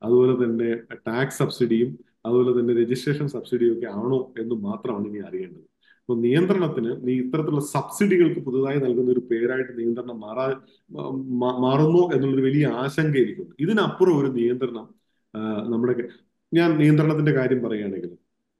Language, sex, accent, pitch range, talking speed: Malayalam, male, native, 115-140 Hz, 125 wpm